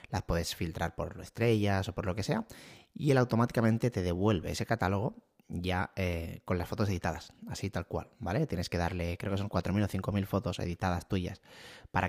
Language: Spanish